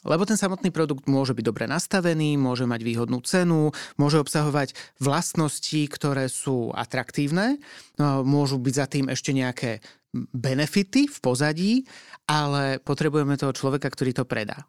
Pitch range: 130-160 Hz